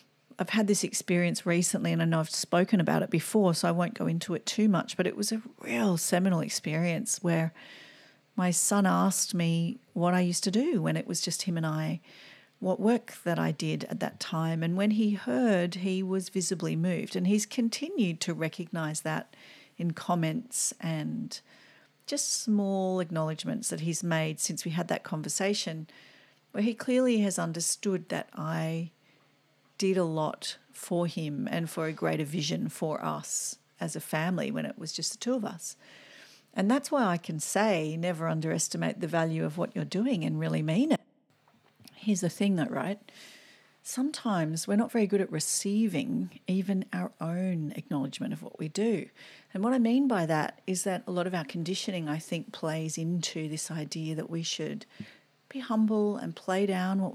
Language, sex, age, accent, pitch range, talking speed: English, female, 40-59, Australian, 160-205 Hz, 185 wpm